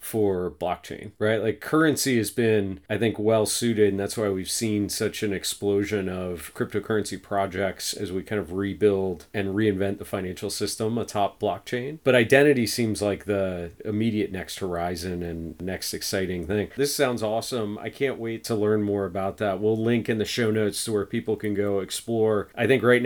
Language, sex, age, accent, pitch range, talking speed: English, male, 40-59, American, 100-120 Hz, 185 wpm